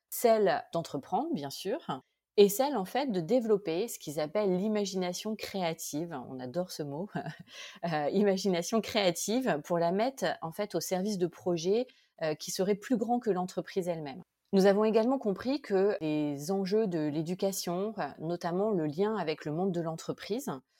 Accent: French